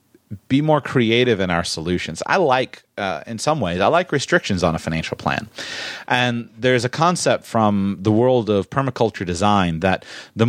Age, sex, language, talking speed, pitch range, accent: 30-49, male, English, 175 wpm, 100-145 Hz, American